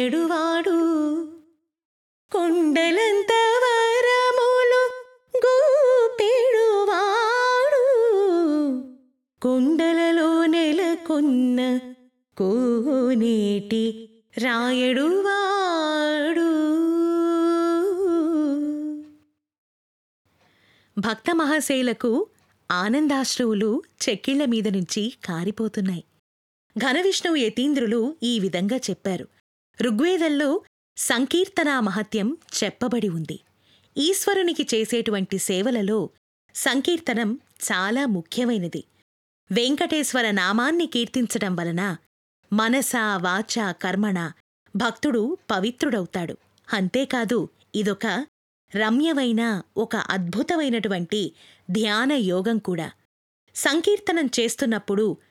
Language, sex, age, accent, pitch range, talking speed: Telugu, female, 20-39, native, 220-330 Hz, 40 wpm